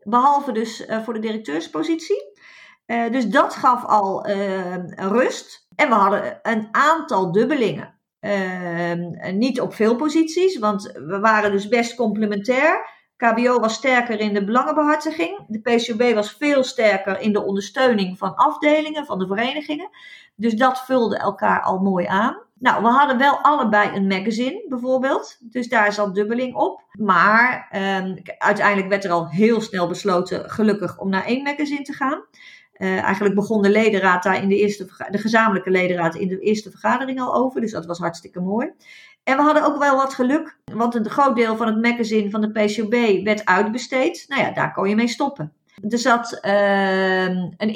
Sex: female